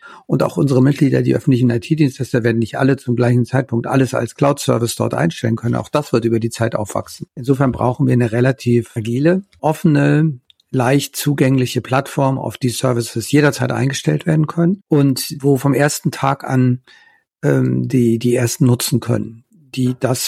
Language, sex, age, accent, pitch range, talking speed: German, male, 50-69, German, 120-140 Hz, 170 wpm